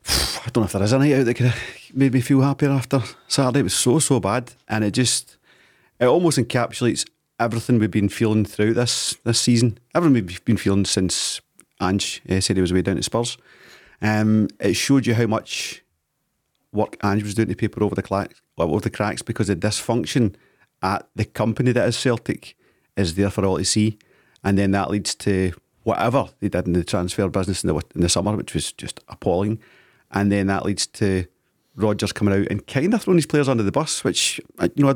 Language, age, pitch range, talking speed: English, 30-49, 100-120 Hz, 215 wpm